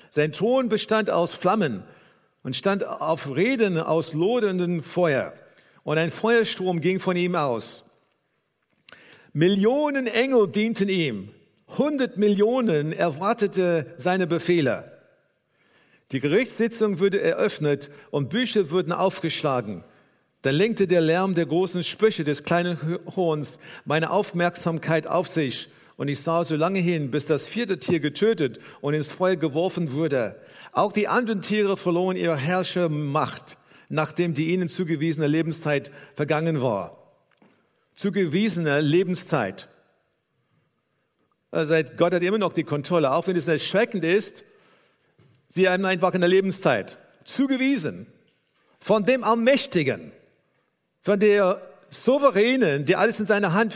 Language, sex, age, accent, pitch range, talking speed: German, male, 50-69, German, 160-205 Hz, 125 wpm